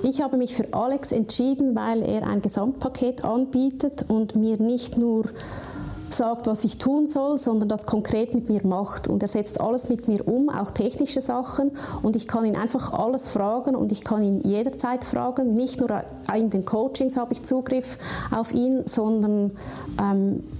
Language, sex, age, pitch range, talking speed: German, female, 30-49, 205-250 Hz, 180 wpm